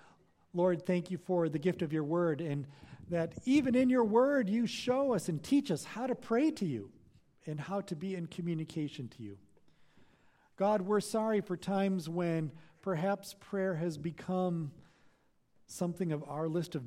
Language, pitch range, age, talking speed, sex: English, 135-185 Hz, 40-59, 175 wpm, male